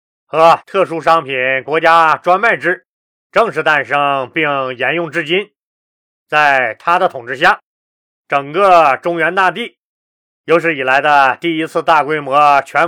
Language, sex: Chinese, male